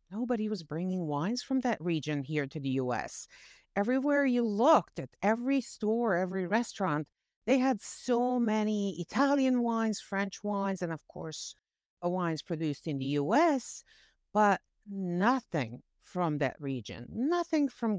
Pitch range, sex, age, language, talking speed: 155-225 Hz, female, 60-79, English, 145 wpm